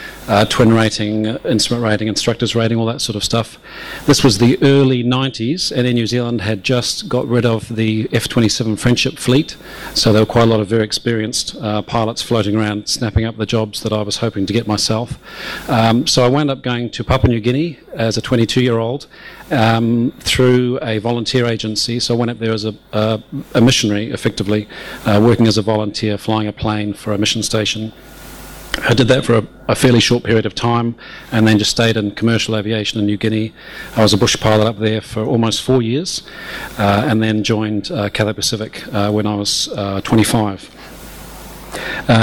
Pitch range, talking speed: 110-125 Hz, 195 wpm